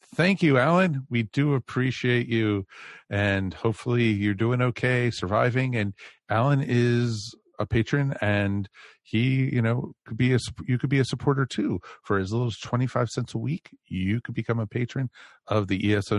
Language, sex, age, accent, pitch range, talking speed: English, male, 50-69, American, 100-120 Hz, 175 wpm